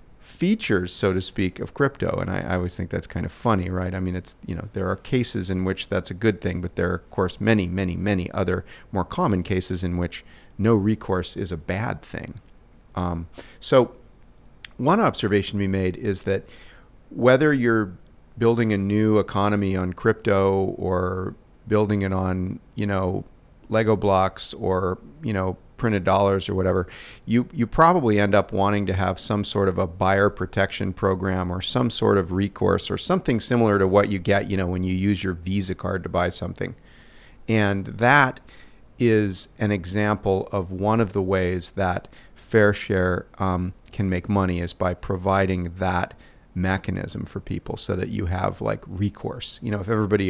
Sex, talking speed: male, 185 wpm